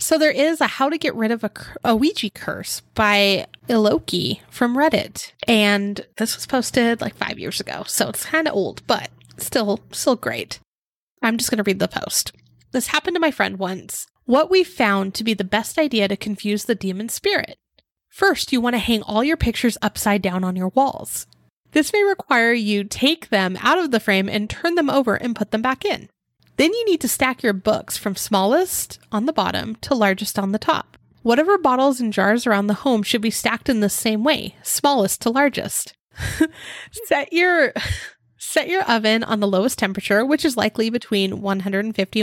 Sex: female